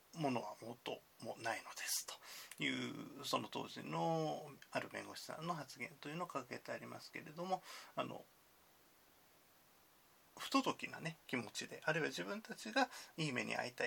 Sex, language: male, Japanese